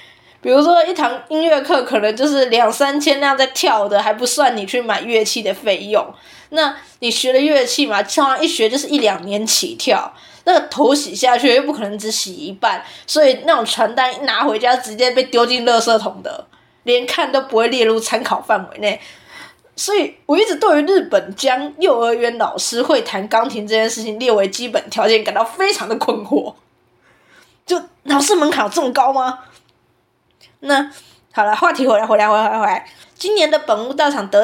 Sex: female